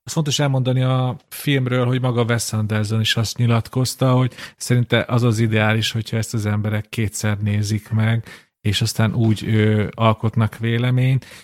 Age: 40-59